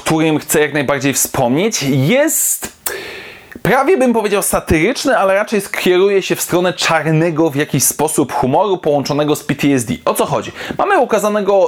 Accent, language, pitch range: native, Polish, 145-190 Hz